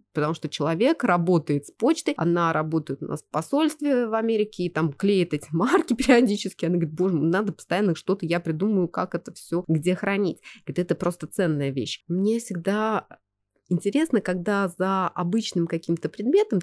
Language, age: Russian, 20-39